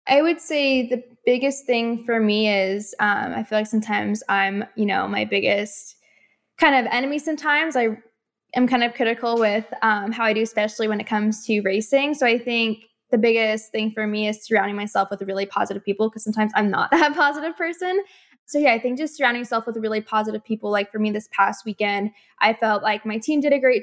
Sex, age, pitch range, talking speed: female, 10-29, 210-240 Hz, 215 wpm